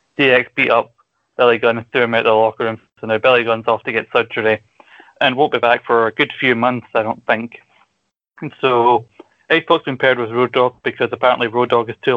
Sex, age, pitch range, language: male, 20-39, 115-125 Hz, English